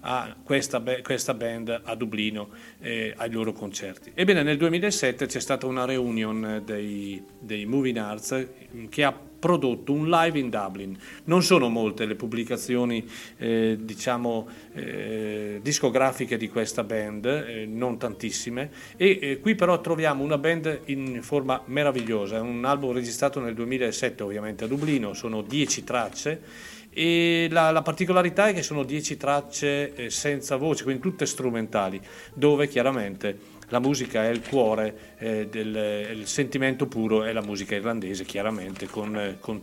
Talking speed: 150 wpm